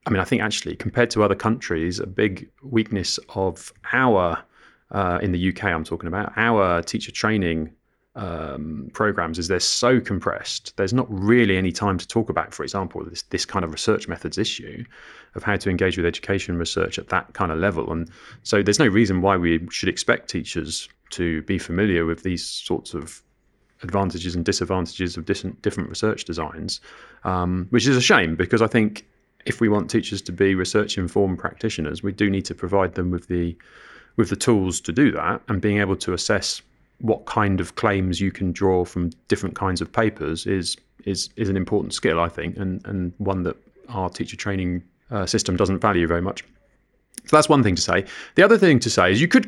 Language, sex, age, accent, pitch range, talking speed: English, male, 30-49, British, 90-105 Hz, 200 wpm